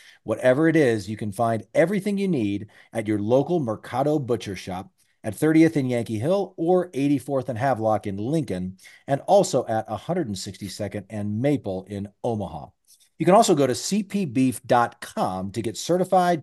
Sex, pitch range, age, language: male, 105-145 Hz, 40-59, English